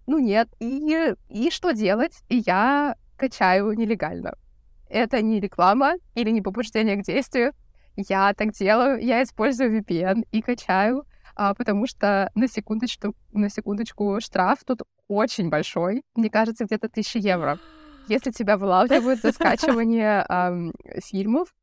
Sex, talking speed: female, 125 wpm